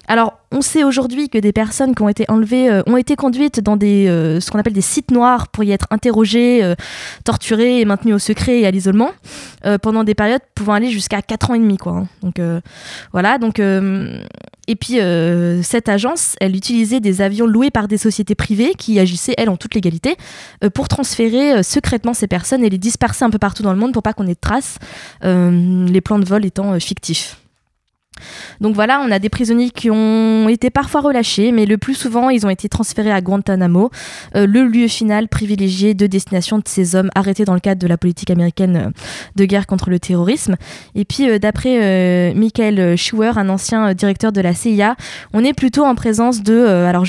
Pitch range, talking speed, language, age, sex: 195-235 Hz, 220 wpm, French, 20-39, female